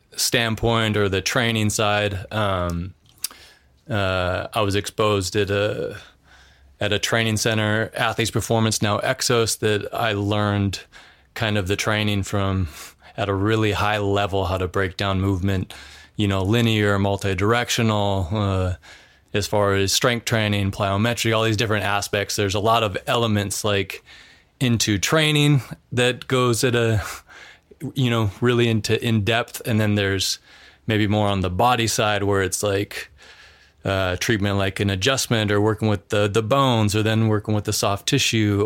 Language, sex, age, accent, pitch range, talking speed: English, male, 20-39, American, 95-115 Hz, 155 wpm